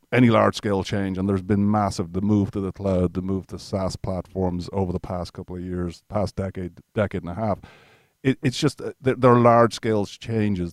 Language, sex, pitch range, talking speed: English, male, 90-105 Hz, 215 wpm